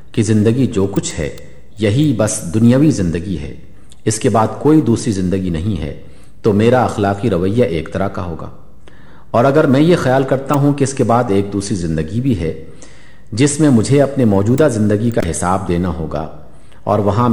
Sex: male